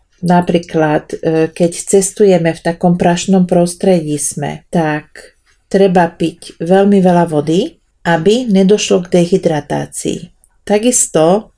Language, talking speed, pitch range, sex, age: Slovak, 100 wpm, 165-195 Hz, female, 40-59